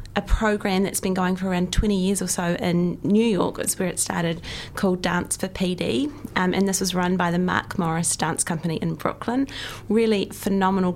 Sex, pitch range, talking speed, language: female, 170-195 Hz, 205 wpm, English